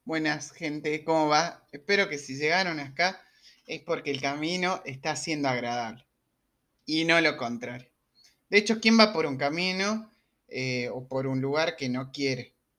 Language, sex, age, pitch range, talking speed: Spanish, male, 20-39, 135-200 Hz, 165 wpm